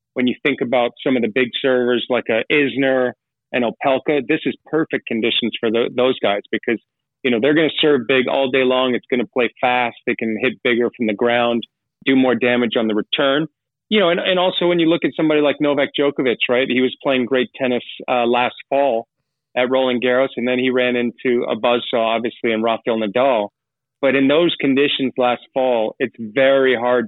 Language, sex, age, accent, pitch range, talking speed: English, male, 30-49, American, 120-135 Hz, 210 wpm